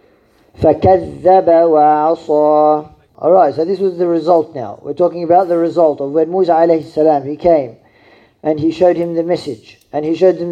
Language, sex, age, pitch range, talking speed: English, male, 40-59, 140-180 Hz, 165 wpm